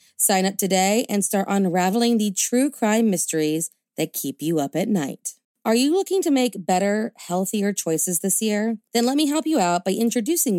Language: English